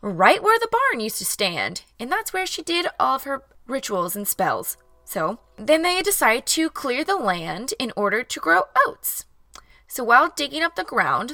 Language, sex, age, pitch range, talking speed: English, female, 20-39, 190-290 Hz, 195 wpm